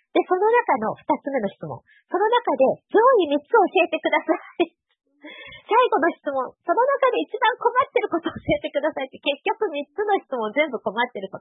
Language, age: Japanese, 30-49